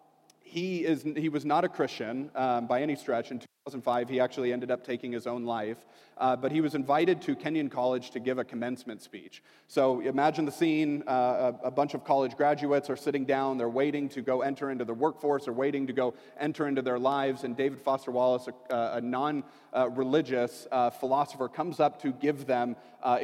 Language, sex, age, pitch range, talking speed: English, male, 40-59, 125-155 Hz, 200 wpm